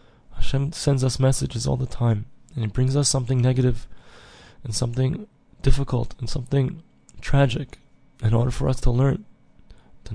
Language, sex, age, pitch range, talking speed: English, male, 20-39, 115-130 Hz, 155 wpm